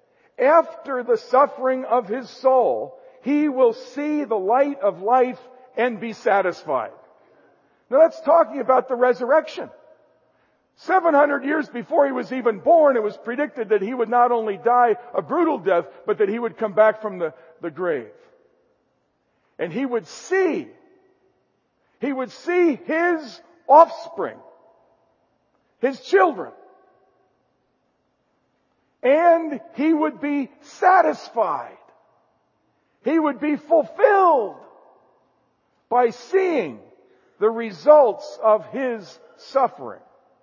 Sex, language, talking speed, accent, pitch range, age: male, English, 115 wpm, American, 230-320 Hz, 50-69